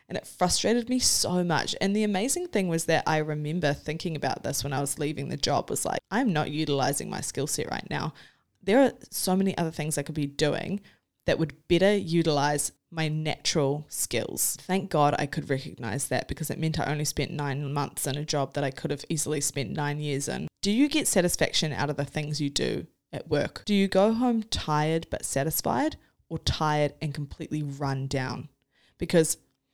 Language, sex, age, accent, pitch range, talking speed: English, female, 20-39, Australian, 145-170 Hz, 205 wpm